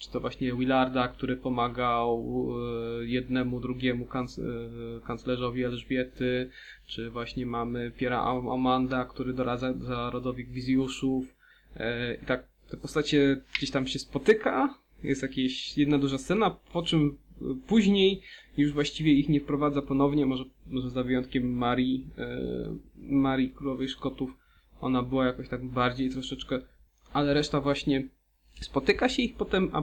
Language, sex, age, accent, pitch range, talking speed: Polish, male, 20-39, native, 125-145 Hz, 125 wpm